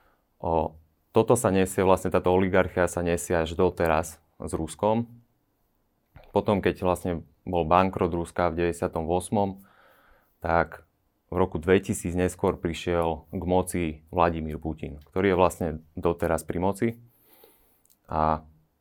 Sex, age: male, 30-49